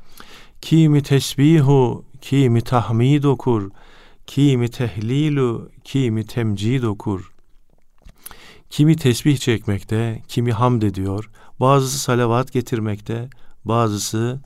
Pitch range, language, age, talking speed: 105-135 Hz, Turkish, 50-69, 85 wpm